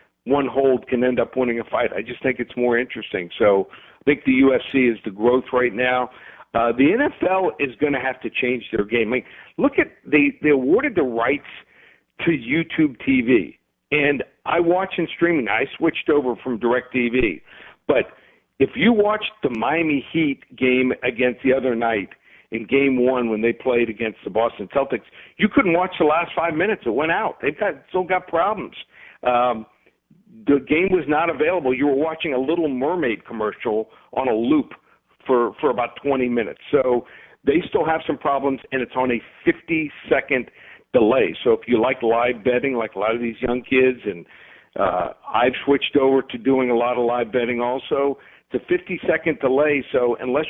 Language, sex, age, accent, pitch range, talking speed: English, male, 60-79, American, 120-155 Hz, 190 wpm